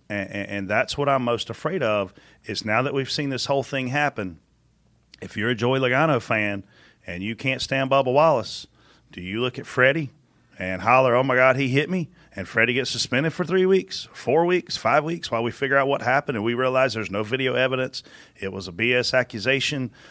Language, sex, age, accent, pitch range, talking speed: English, male, 40-59, American, 95-125 Hz, 215 wpm